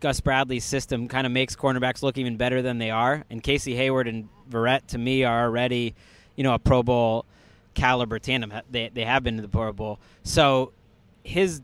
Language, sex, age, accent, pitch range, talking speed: English, male, 20-39, American, 120-140 Hz, 200 wpm